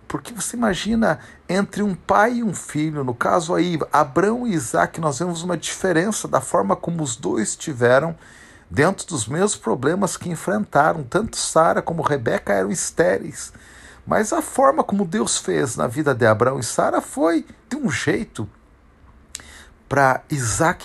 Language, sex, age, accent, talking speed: Portuguese, male, 50-69, Brazilian, 160 wpm